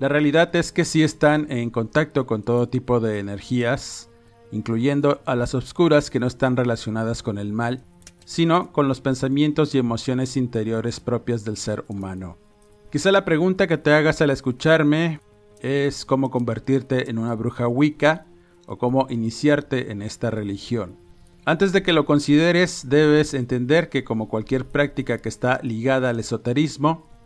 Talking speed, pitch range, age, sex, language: 160 wpm, 115-150 Hz, 40-59, male, Spanish